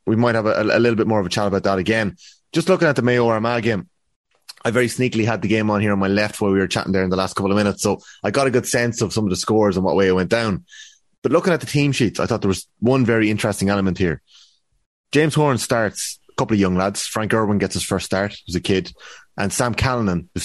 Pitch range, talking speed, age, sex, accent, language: 95-115 Hz, 280 wpm, 30-49, male, Irish, English